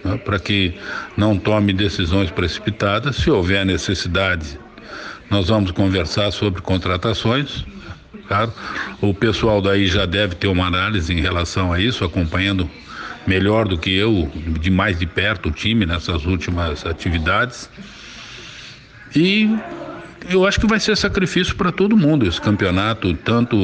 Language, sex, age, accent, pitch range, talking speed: Portuguese, male, 60-79, Brazilian, 90-115 Hz, 135 wpm